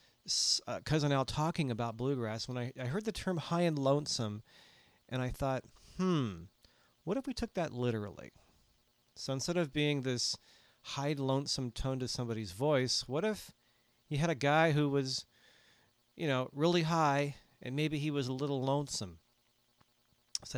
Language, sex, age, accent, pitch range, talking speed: English, male, 40-59, American, 115-145 Hz, 165 wpm